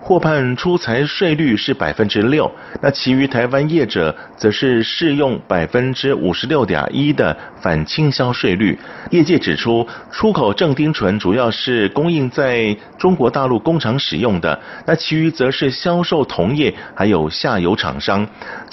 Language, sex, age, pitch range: Chinese, male, 50-69, 120-170 Hz